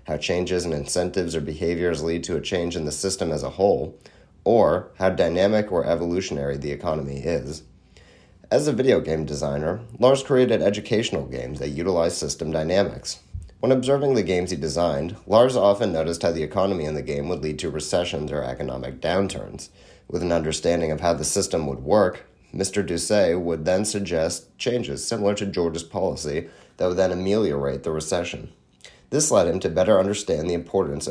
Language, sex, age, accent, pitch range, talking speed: English, male, 30-49, American, 75-95 Hz, 175 wpm